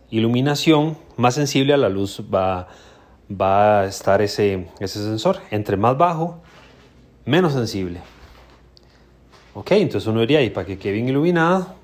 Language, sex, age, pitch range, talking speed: Spanish, male, 30-49, 100-150 Hz, 140 wpm